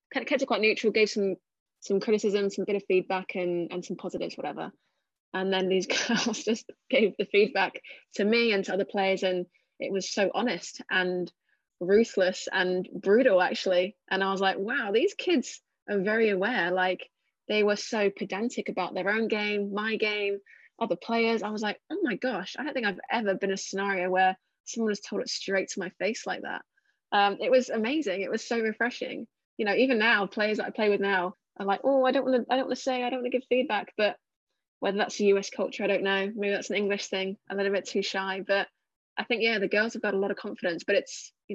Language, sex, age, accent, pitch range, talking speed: English, female, 20-39, British, 190-220 Hz, 235 wpm